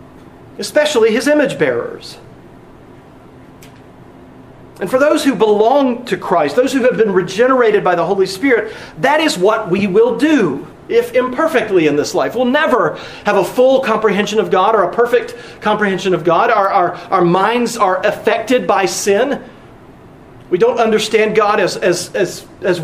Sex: male